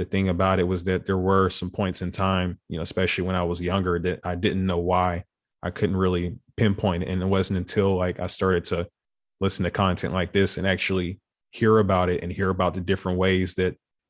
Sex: male